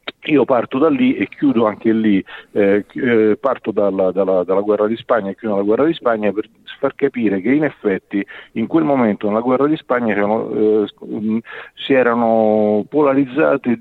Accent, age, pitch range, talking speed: native, 40-59, 105-135 Hz, 175 wpm